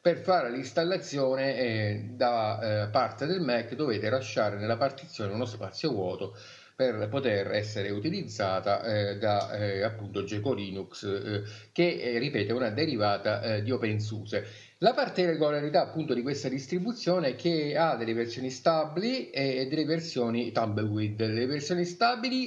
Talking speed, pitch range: 145 wpm, 110-155 Hz